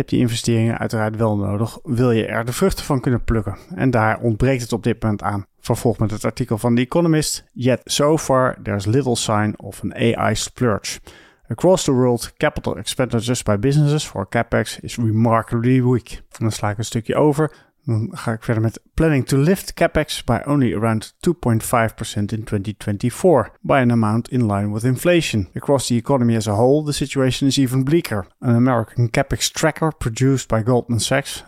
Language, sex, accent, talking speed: Dutch, male, Dutch, 185 wpm